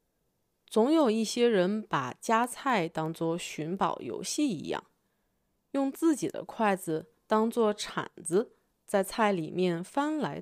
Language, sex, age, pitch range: Chinese, female, 30-49, 175-250 Hz